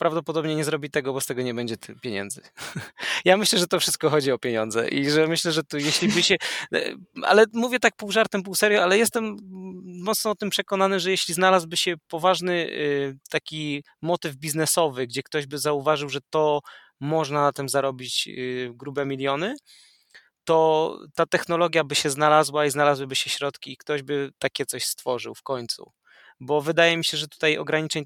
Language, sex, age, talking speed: Polish, male, 20-39, 180 wpm